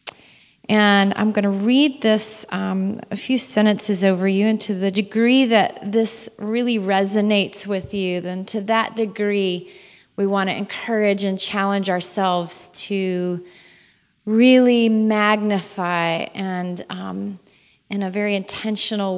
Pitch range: 195-220 Hz